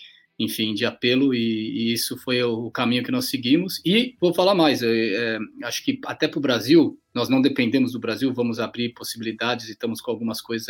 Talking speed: 210 wpm